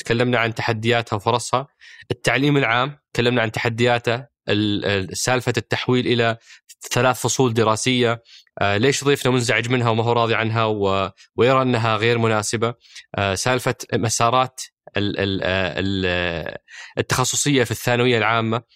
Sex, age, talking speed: male, 20-39, 105 wpm